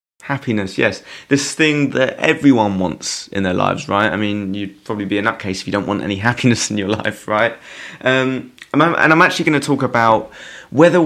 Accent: British